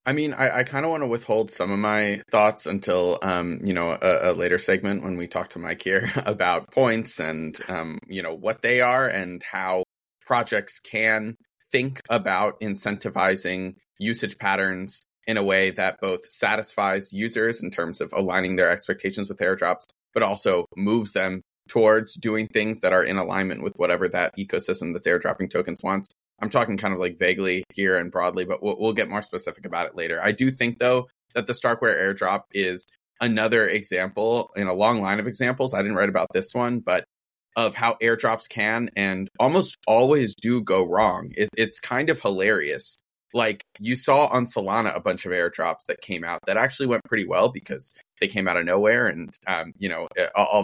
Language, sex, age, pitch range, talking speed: English, male, 20-39, 95-120 Hz, 195 wpm